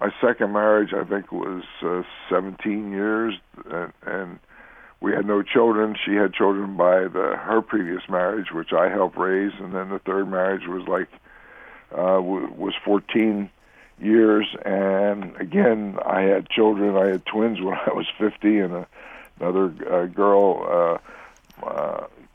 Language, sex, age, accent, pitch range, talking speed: English, male, 60-79, American, 95-110 Hz, 150 wpm